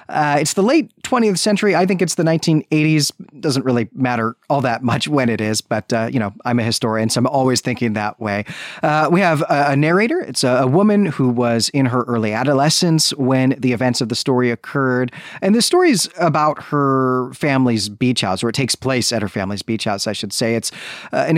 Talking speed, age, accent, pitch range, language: 225 wpm, 30-49, American, 120-165 Hz, English